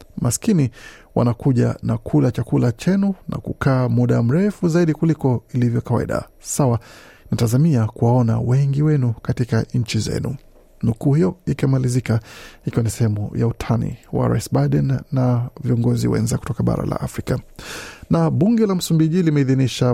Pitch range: 120-145 Hz